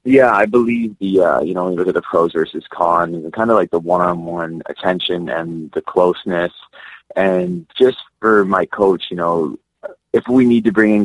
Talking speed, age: 210 wpm, 20-39